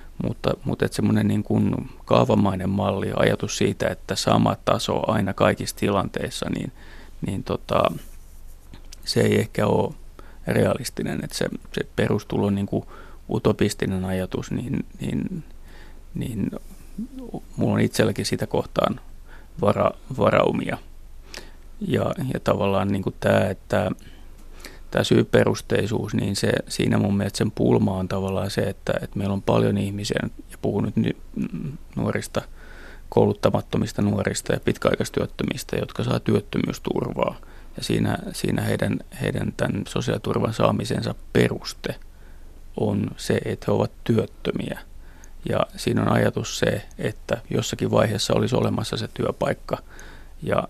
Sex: male